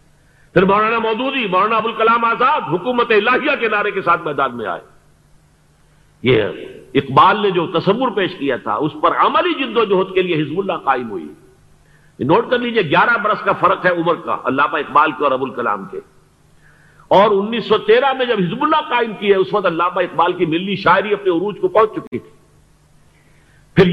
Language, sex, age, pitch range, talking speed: Urdu, male, 50-69, 160-225 Hz, 195 wpm